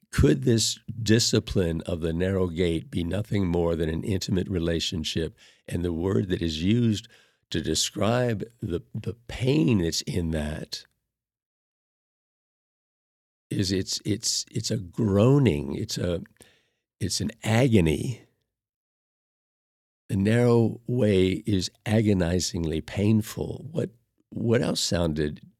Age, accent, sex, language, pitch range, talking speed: 50-69, American, male, English, 85-110 Hz, 115 wpm